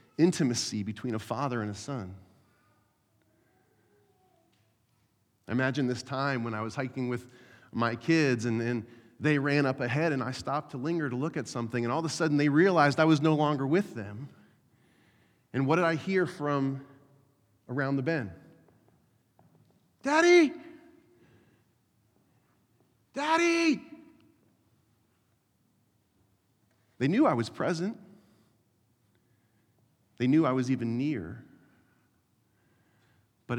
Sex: male